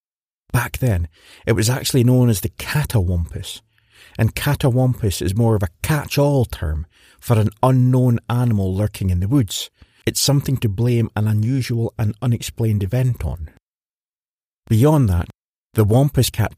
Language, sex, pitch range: English, male, 95-130 Hz